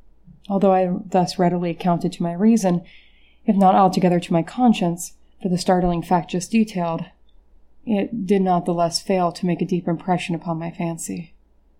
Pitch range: 170-195 Hz